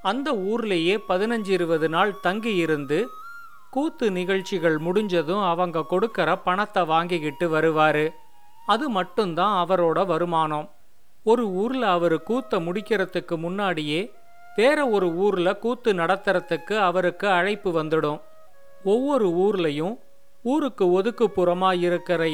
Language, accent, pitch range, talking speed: Tamil, native, 170-225 Hz, 100 wpm